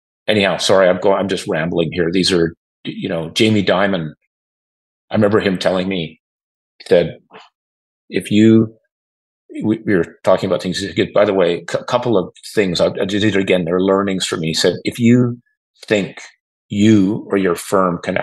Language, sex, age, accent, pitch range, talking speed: English, male, 40-59, American, 85-110 Hz, 170 wpm